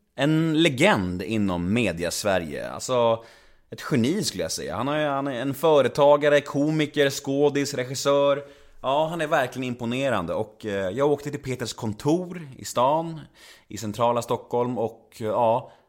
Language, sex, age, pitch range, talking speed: Swedish, male, 30-49, 100-145 Hz, 140 wpm